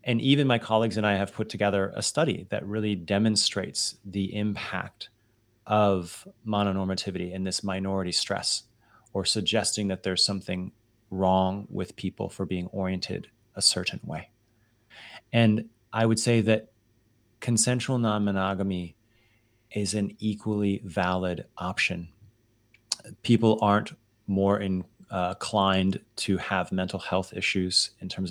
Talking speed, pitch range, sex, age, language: 130 wpm, 95-110 Hz, male, 30-49, English